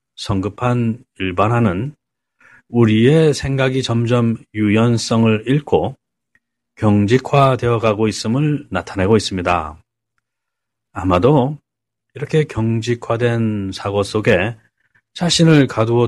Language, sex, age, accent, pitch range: Korean, male, 30-49, native, 105-135 Hz